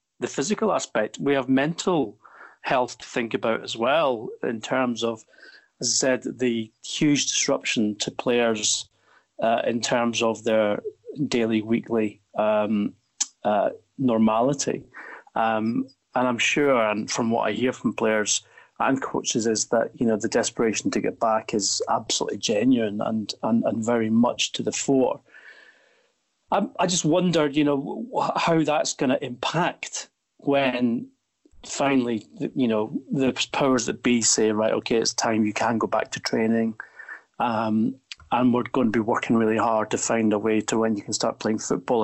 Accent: British